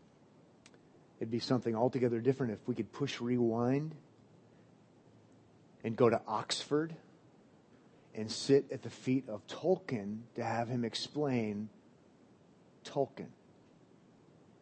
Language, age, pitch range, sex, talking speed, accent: English, 40-59, 115-155 Hz, male, 105 wpm, American